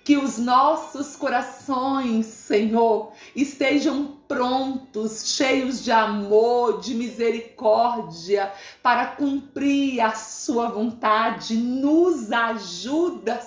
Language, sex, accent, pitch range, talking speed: Portuguese, female, Brazilian, 225-260 Hz, 85 wpm